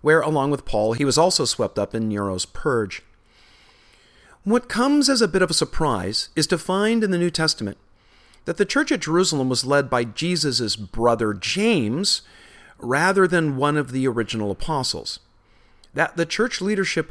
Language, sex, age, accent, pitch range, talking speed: English, male, 40-59, American, 110-170 Hz, 170 wpm